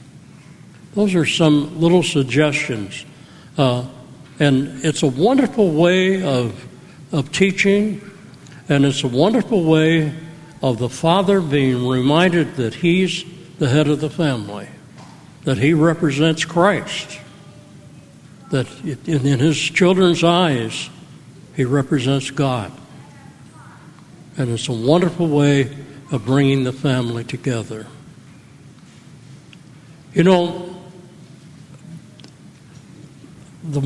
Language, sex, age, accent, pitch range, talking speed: English, male, 60-79, American, 140-165 Hz, 100 wpm